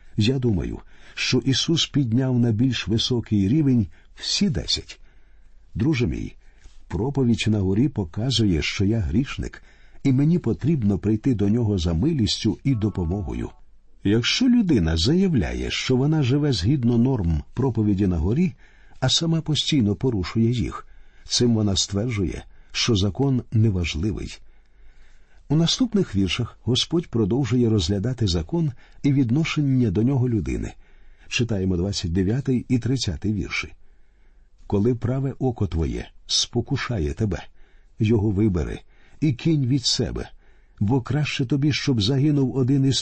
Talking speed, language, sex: 125 wpm, Ukrainian, male